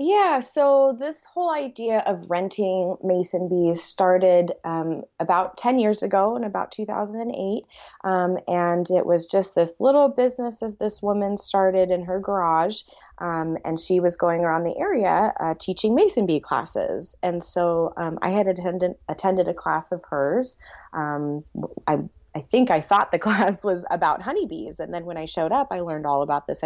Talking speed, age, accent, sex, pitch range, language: 180 wpm, 20-39, American, female, 160-210 Hz, English